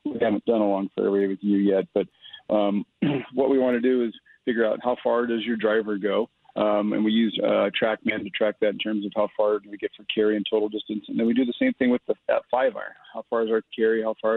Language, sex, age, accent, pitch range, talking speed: English, male, 40-59, American, 110-135 Hz, 270 wpm